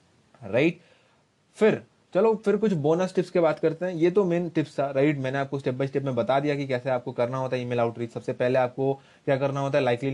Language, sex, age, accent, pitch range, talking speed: Hindi, male, 20-39, native, 130-170 Hz, 245 wpm